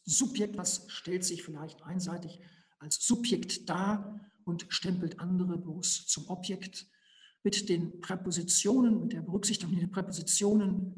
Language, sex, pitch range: German, male, 165-195 Hz